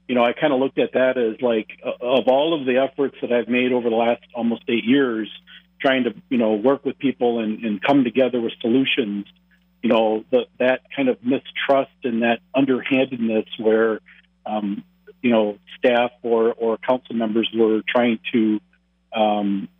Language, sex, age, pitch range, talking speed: English, male, 50-69, 115-130 Hz, 180 wpm